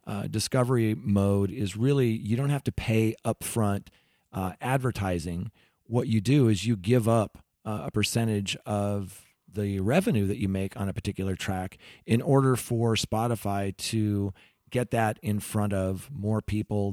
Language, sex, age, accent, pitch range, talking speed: English, male, 40-59, American, 100-120 Hz, 160 wpm